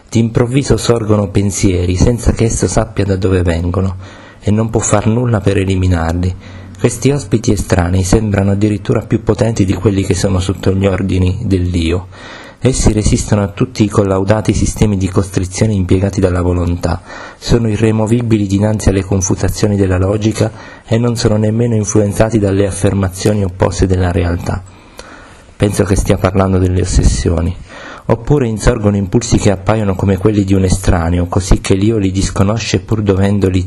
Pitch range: 95-110 Hz